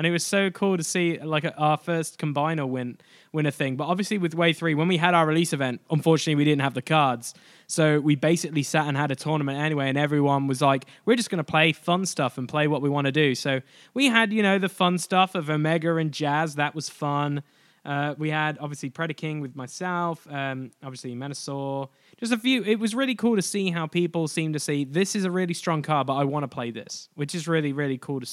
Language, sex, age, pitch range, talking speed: English, male, 10-29, 140-170 Hz, 245 wpm